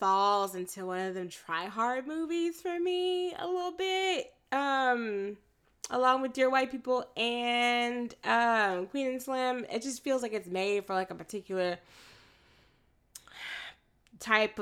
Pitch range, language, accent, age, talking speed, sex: 175-255 Hz, English, American, 10-29, 140 wpm, female